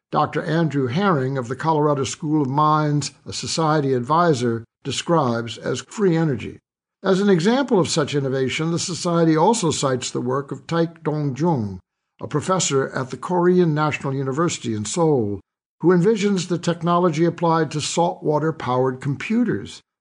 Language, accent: English, American